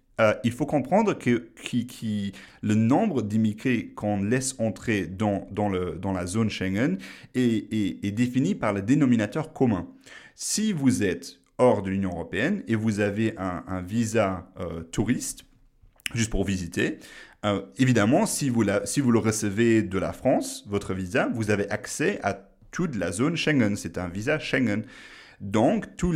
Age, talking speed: 30-49, 170 wpm